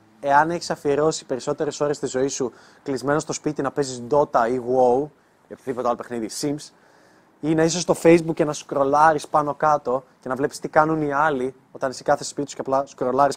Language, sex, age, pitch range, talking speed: Greek, male, 20-39, 130-170 Hz, 205 wpm